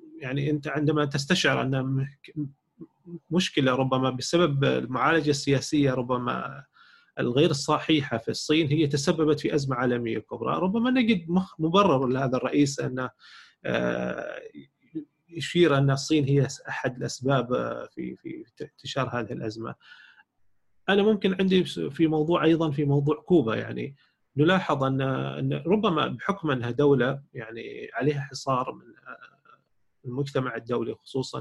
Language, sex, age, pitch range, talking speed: Arabic, male, 30-49, 130-160 Hz, 115 wpm